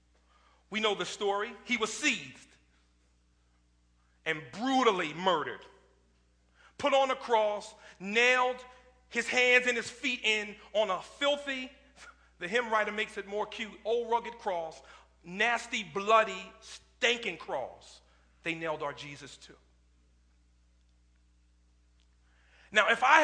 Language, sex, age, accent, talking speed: English, male, 40-59, American, 120 wpm